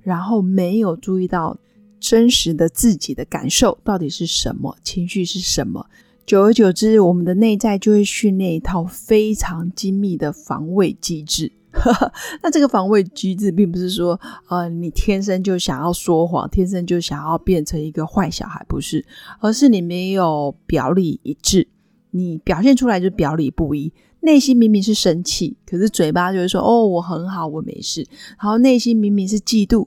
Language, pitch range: Chinese, 175-220 Hz